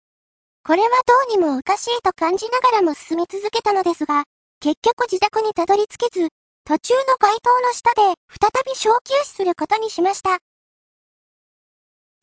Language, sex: Japanese, male